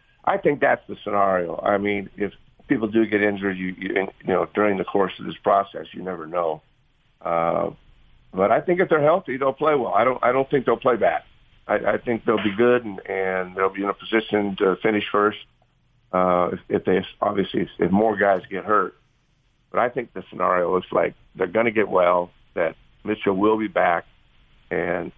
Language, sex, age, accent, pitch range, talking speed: English, male, 50-69, American, 95-110 Hz, 205 wpm